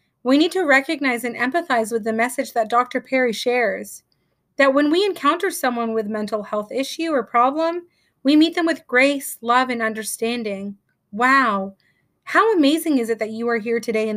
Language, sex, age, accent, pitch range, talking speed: English, female, 30-49, American, 225-290 Hz, 180 wpm